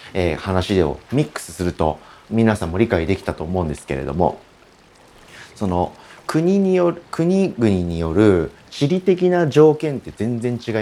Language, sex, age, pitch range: Japanese, male, 40-59, 80-135 Hz